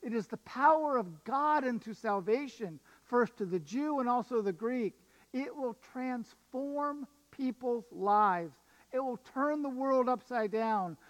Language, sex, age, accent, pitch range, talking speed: English, male, 50-69, American, 215-265 Hz, 150 wpm